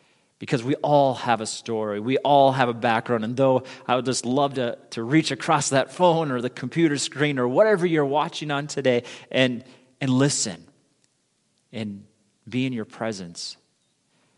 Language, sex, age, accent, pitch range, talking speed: English, male, 30-49, American, 115-145 Hz, 170 wpm